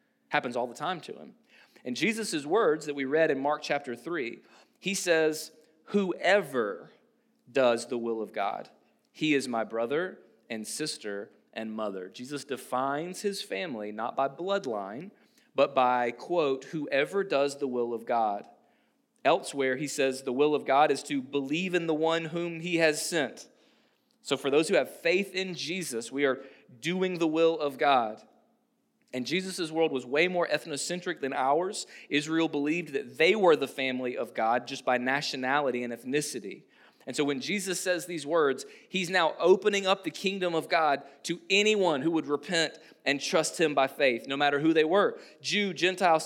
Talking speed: 175 wpm